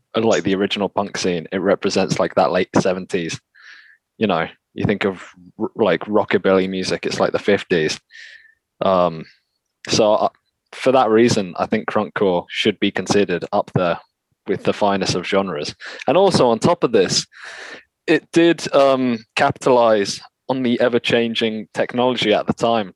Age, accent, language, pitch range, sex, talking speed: 20-39, British, English, 95-120 Hz, male, 155 wpm